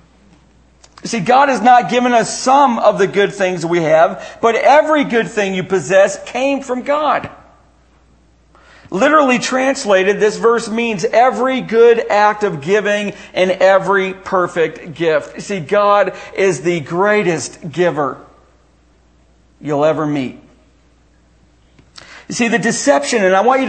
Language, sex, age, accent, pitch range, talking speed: English, male, 40-59, American, 165-235 Hz, 140 wpm